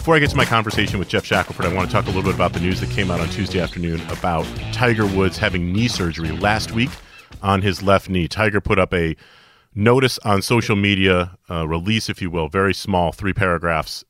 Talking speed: 230 wpm